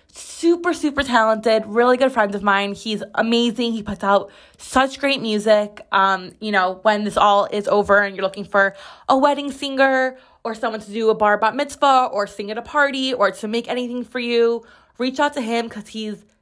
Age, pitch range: 20-39, 200-235 Hz